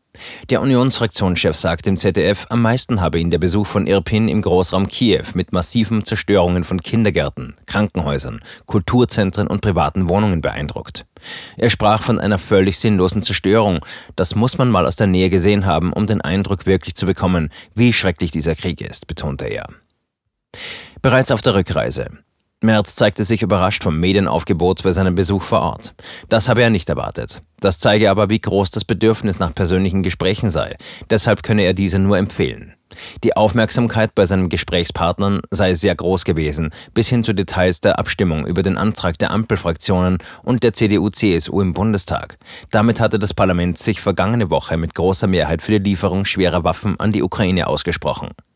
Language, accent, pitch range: German, German, 90-110 Hz